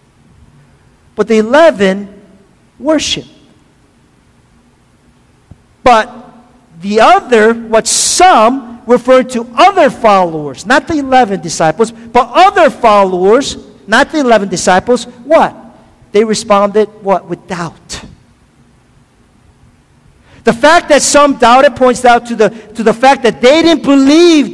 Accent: American